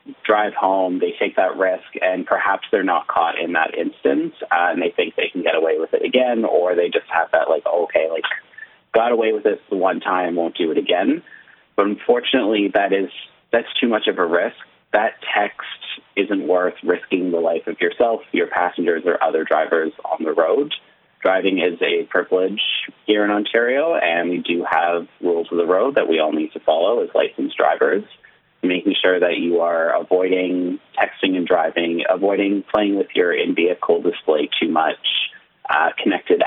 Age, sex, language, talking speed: 30-49, male, English, 185 wpm